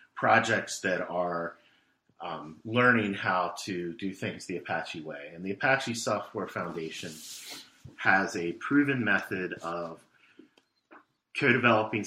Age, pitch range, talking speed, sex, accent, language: 30-49, 90-110 Hz, 115 wpm, male, American, English